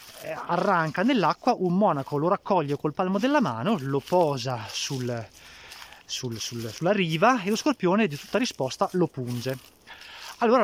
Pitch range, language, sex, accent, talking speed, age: 145-225 Hz, Italian, male, native, 145 wpm, 30-49